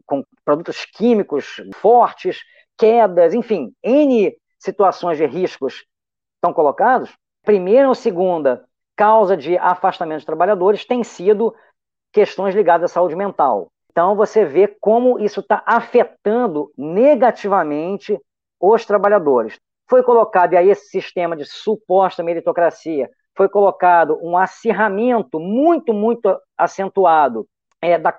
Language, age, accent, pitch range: Portuguese, 40-59, Brazilian, 180-240 Hz